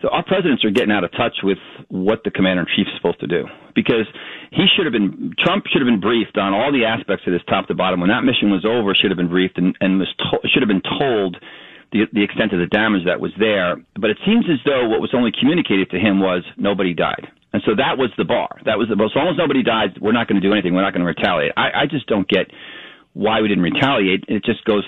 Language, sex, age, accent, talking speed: English, male, 40-59, American, 275 wpm